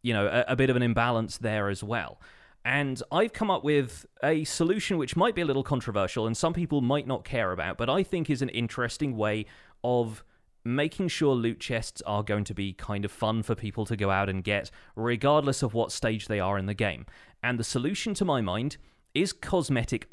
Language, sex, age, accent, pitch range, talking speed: English, male, 30-49, British, 110-145 Hz, 220 wpm